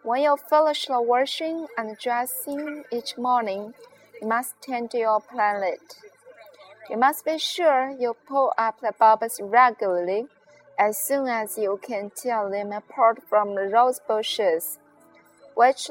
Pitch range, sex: 215-285 Hz, female